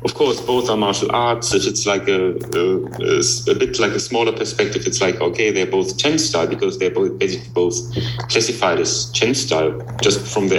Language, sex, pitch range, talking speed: English, male, 105-125 Hz, 205 wpm